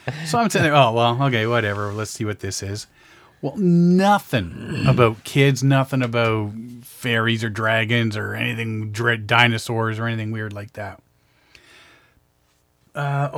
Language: English